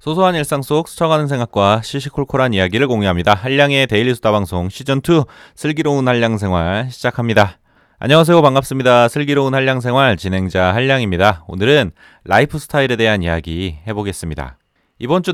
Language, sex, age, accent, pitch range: Korean, male, 30-49, native, 95-145 Hz